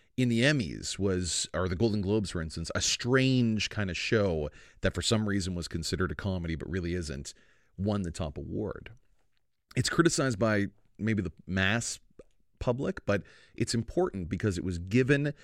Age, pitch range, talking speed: 30-49, 90-120 Hz, 170 wpm